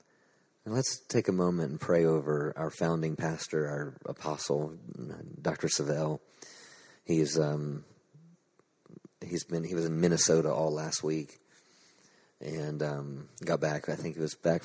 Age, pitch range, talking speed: 30-49, 75-80 Hz, 140 wpm